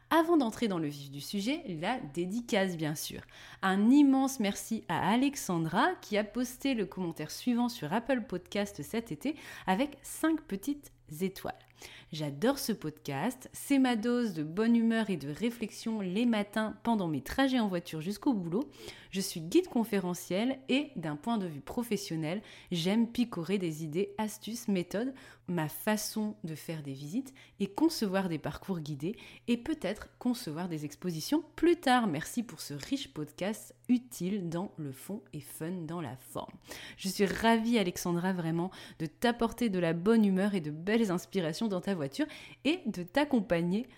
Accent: French